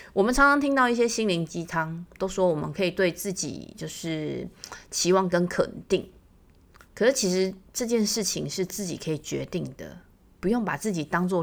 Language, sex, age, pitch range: Chinese, female, 30-49, 170-210 Hz